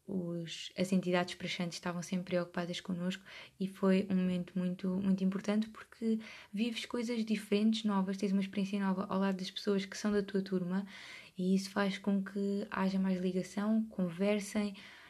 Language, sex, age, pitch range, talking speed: Portuguese, female, 20-39, 185-210 Hz, 165 wpm